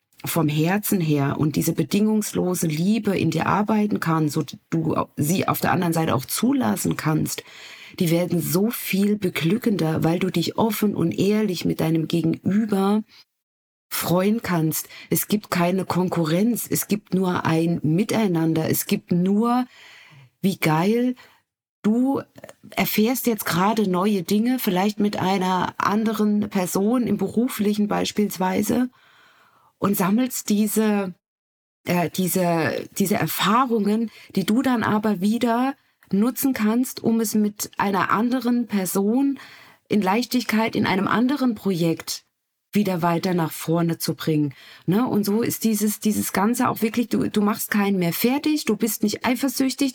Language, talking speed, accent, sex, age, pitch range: German, 140 wpm, German, female, 50-69, 175-230 Hz